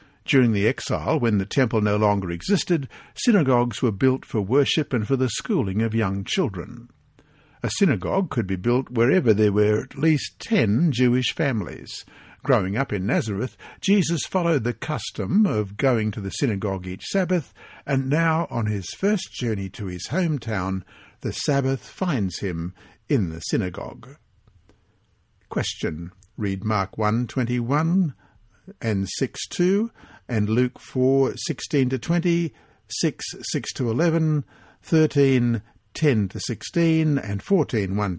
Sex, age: male, 60-79